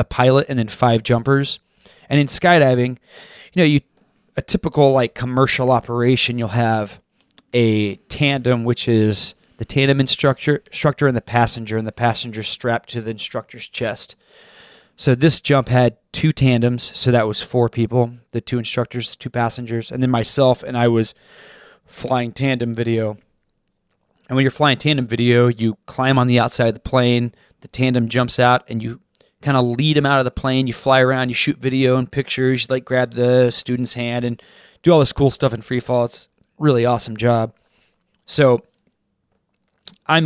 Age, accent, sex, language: 20-39, American, male, English